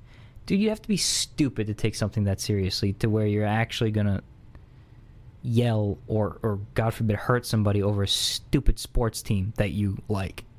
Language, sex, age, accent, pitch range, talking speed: English, male, 20-39, American, 115-175 Hz, 180 wpm